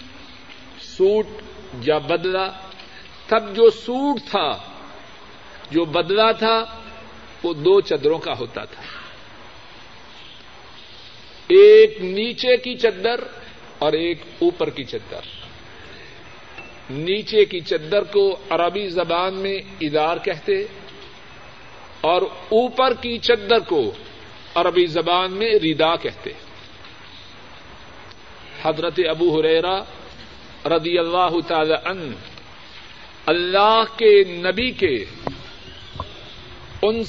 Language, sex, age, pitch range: Urdu, male, 50-69, 170-235 Hz